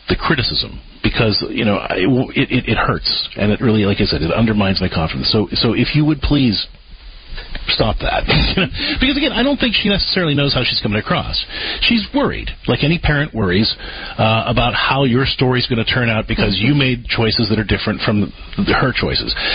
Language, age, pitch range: English, 40-59, 100-140 Hz